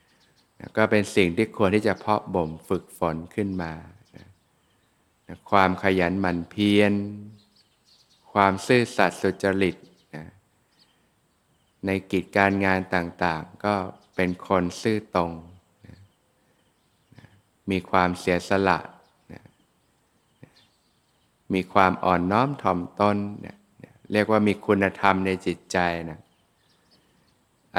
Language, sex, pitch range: Thai, male, 90-105 Hz